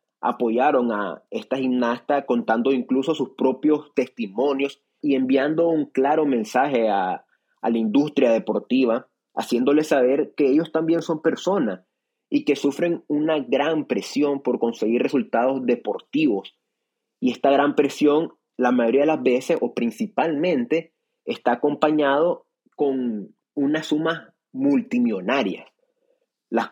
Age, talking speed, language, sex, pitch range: 30-49, 120 wpm, Spanish, male, 120-150 Hz